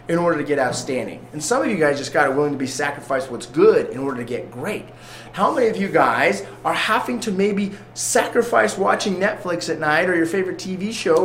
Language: English